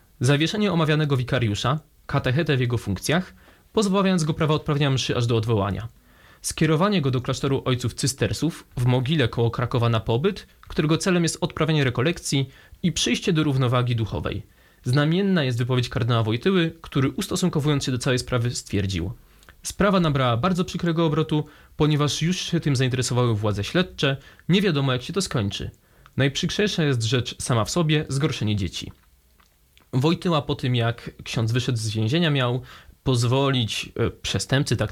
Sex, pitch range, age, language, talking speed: male, 115-155 Hz, 20-39, Polish, 150 wpm